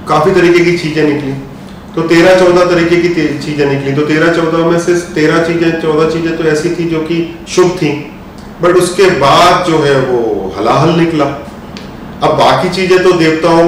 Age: 40-59